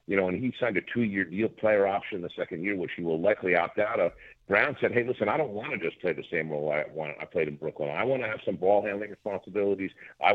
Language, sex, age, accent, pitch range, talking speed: English, male, 50-69, American, 90-120 Hz, 280 wpm